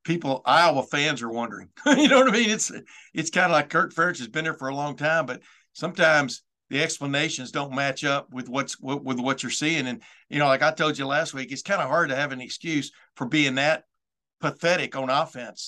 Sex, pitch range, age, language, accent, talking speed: male, 135-160 Hz, 60-79, English, American, 230 wpm